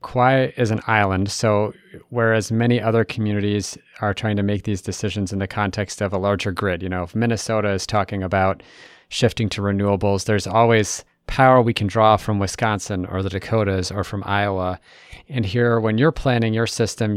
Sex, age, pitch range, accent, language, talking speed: male, 30-49, 105-125 Hz, American, English, 185 wpm